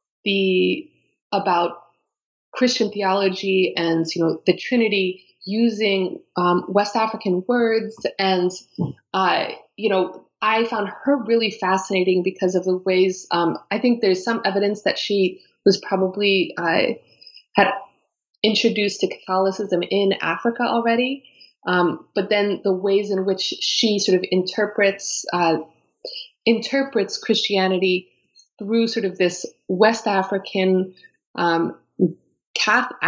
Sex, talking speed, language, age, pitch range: female, 120 wpm, English, 20-39, 180-210 Hz